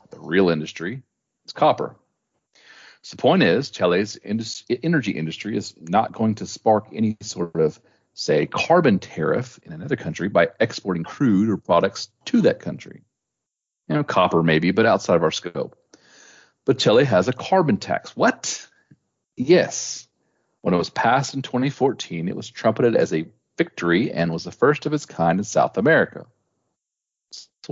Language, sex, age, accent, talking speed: English, male, 40-59, American, 160 wpm